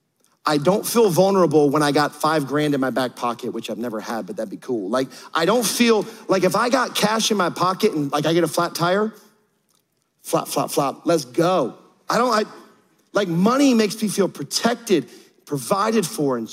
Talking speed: 205 wpm